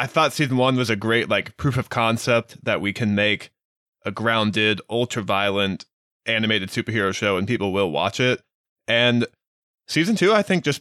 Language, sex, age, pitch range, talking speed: English, male, 20-39, 105-125 Hz, 185 wpm